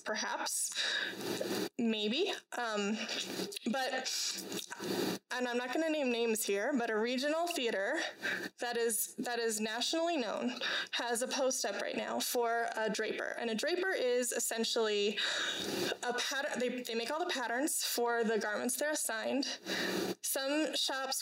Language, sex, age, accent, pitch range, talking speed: English, female, 20-39, American, 230-290 Hz, 140 wpm